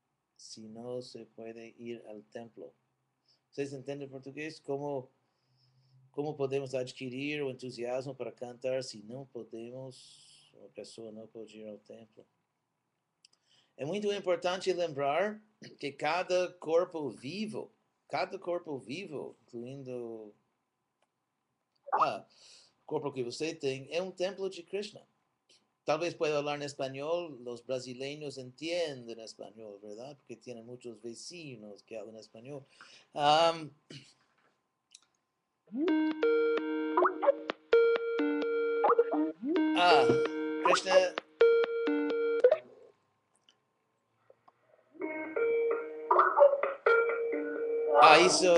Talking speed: 90 wpm